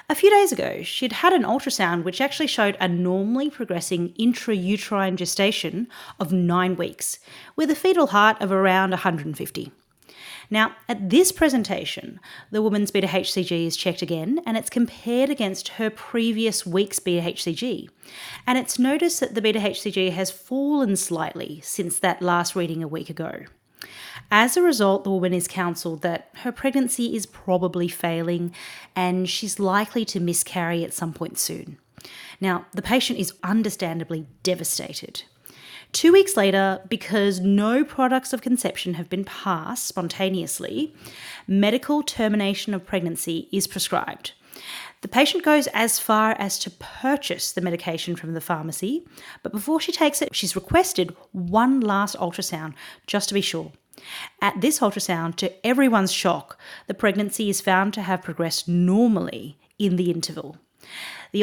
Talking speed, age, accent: 145 wpm, 30-49, Australian